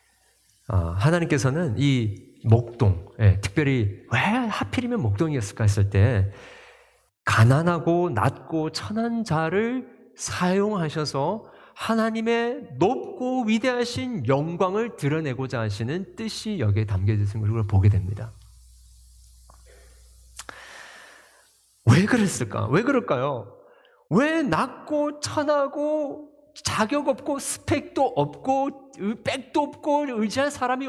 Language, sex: Korean, male